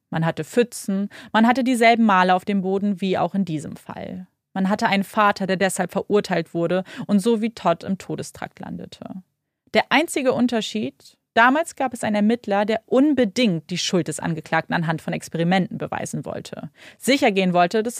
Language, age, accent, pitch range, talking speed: German, 30-49, German, 180-225 Hz, 175 wpm